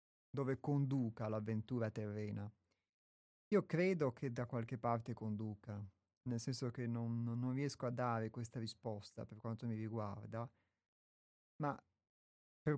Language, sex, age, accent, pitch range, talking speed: Italian, male, 30-49, native, 110-140 Hz, 125 wpm